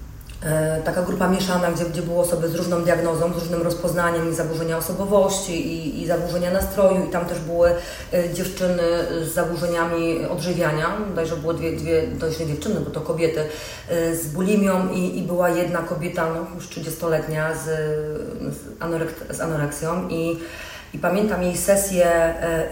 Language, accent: Polish, native